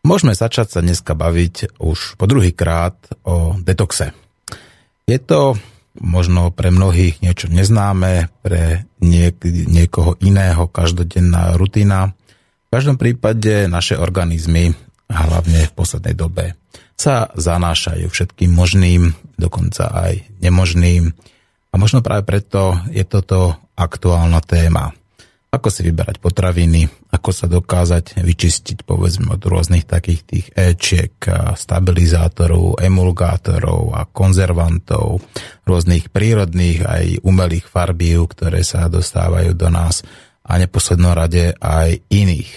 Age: 30-49